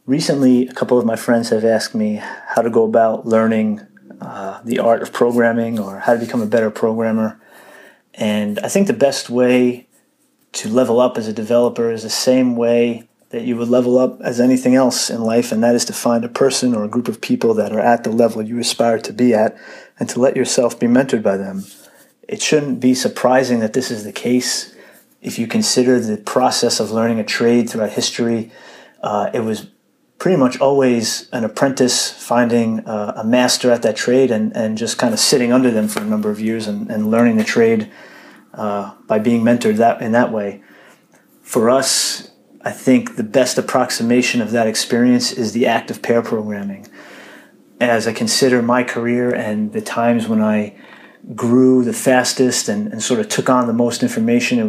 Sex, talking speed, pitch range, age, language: male, 200 wpm, 110-130 Hz, 30-49, English